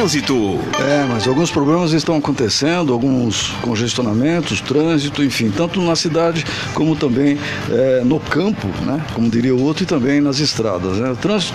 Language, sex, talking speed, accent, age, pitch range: Portuguese, male, 160 wpm, Brazilian, 60-79, 135-170 Hz